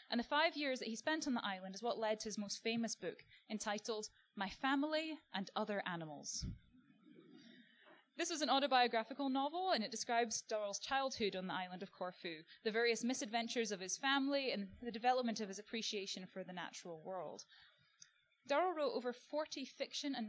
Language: English